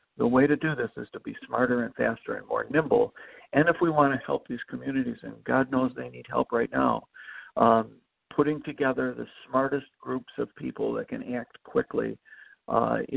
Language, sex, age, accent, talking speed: English, male, 60-79, American, 195 wpm